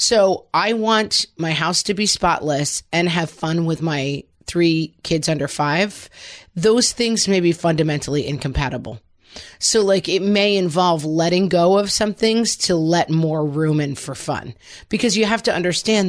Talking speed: 170 wpm